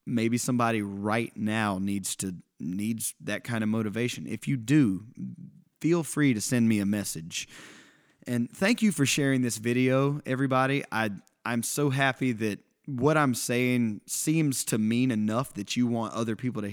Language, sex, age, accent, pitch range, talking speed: English, male, 20-39, American, 110-140 Hz, 170 wpm